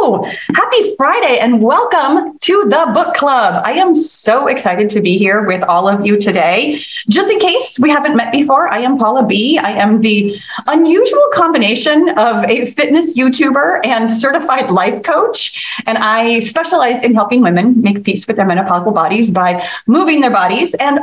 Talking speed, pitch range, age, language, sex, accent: 175 wpm, 205-310 Hz, 30-49, English, female, American